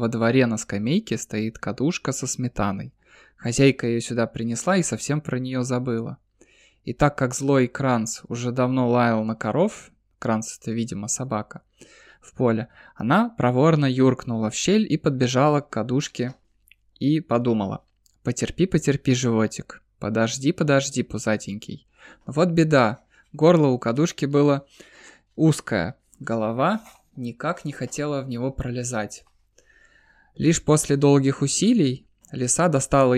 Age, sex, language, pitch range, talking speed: 20-39, male, Russian, 115-150 Hz, 130 wpm